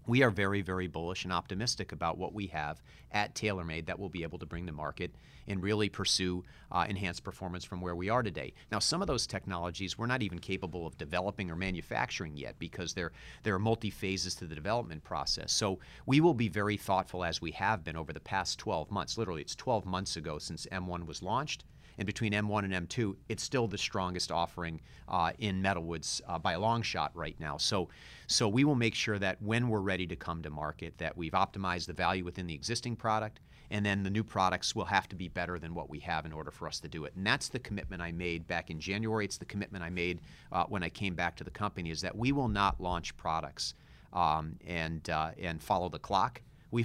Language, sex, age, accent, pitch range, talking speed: English, male, 40-59, American, 85-105 Hz, 230 wpm